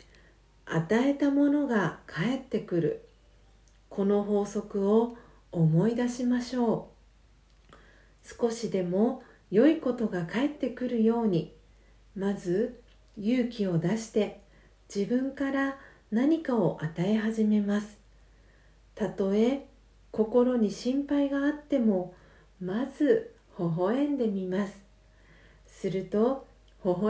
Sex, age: female, 40-59